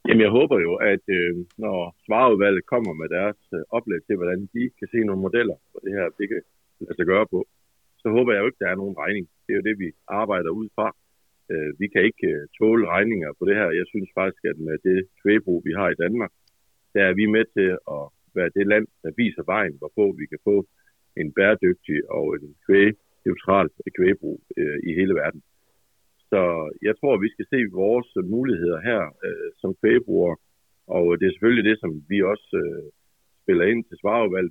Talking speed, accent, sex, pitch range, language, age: 210 wpm, native, male, 90-115 Hz, Danish, 60-79